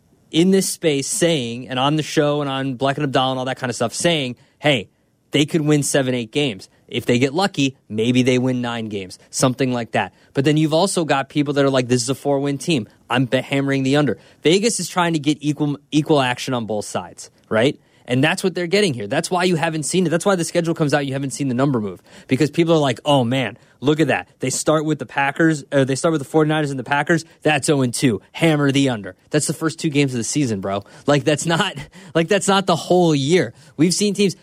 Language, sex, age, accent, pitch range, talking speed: English, male, 20-39, American, 130-165 Hz, 240 wpm